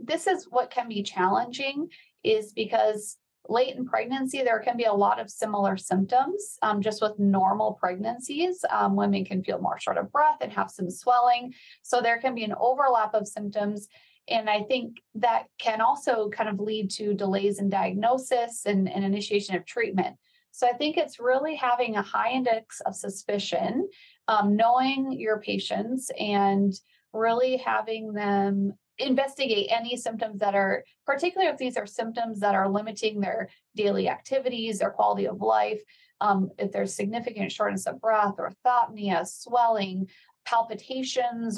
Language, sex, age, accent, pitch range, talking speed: English, female, 30-49, American, 205-255 Hz, 160 wpm